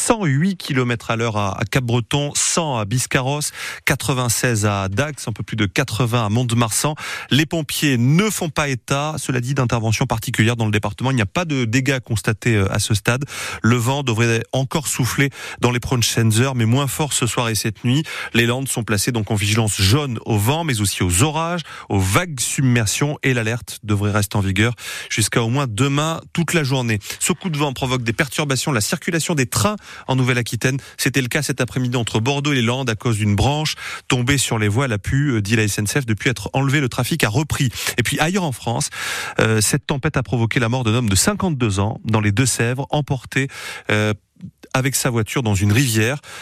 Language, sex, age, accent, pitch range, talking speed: French, male, 30-49, French, 110-140 Hz, 210 wpm